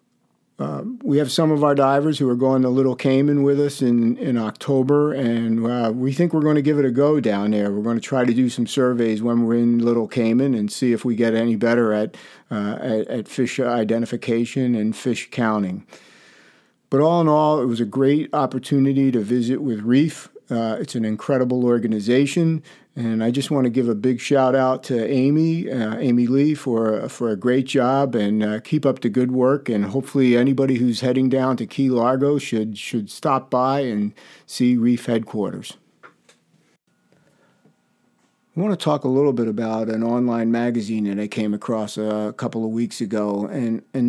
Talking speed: 190 wpm